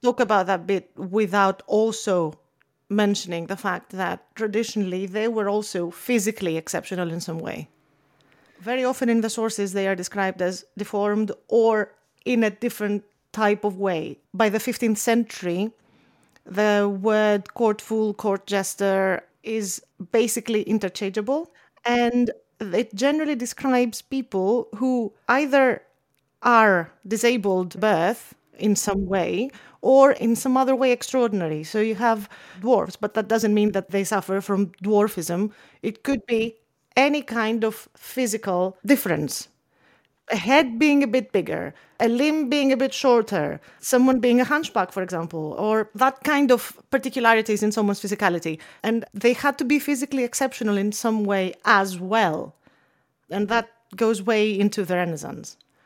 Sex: female